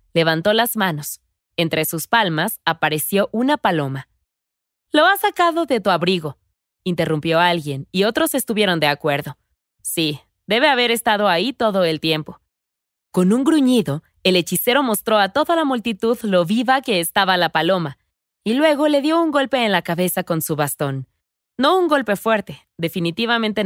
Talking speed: 160 wpm